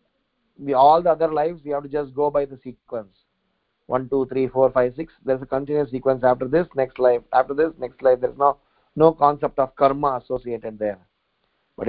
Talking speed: 205 wpm